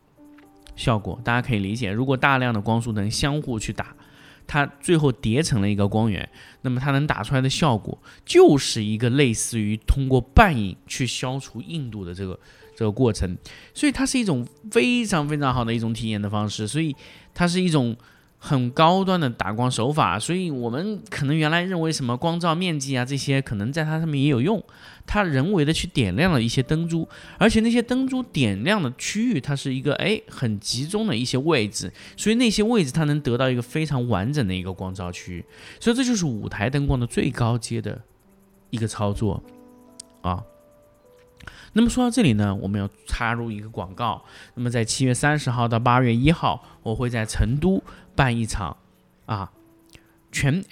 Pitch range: 110-150 Hz